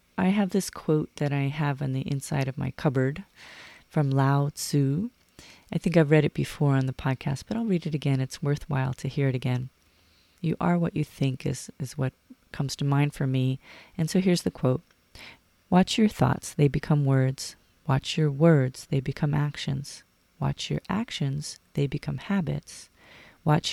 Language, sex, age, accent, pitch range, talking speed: English, female, 30-49, American, 135-165 Hz, 185 wpm